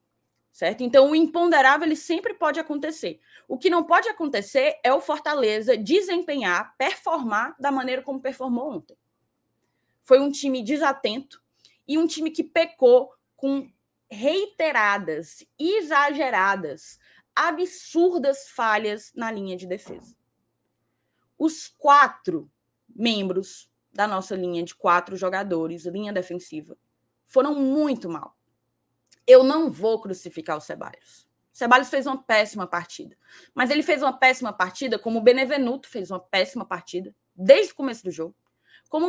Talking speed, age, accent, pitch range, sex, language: 130 wpm, 20-39, Brazilian, 185-305 Hz, female, Portuguese